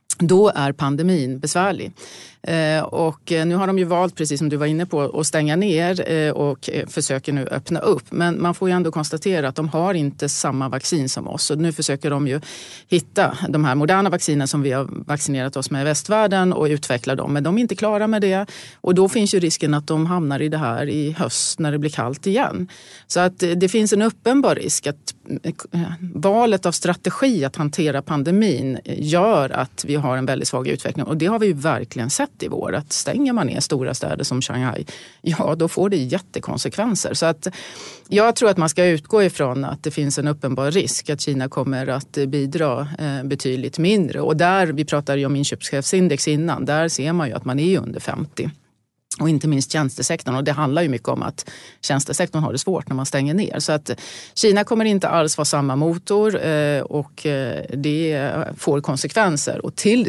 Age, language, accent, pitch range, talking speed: 30-49, Swedish, native, 140-180 Hz, 200 wpm